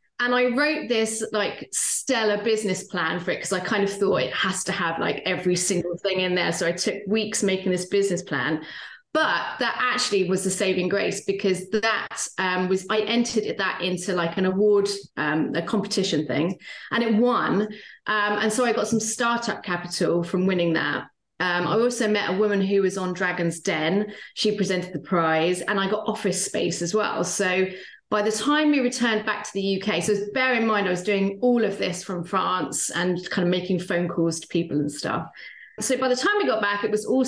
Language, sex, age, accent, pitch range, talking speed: English, female, 30-49, British, 185-220 Hz, 215 wpm